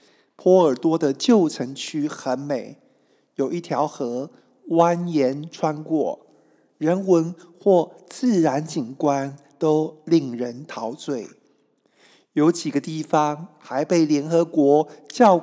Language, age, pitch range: Chinese, 50-69, 140-175 Hz